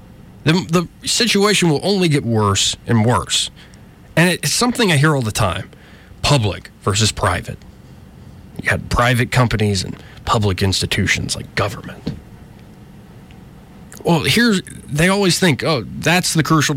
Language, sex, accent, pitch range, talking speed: English, male, American, 120-165 Hz, 135 wpm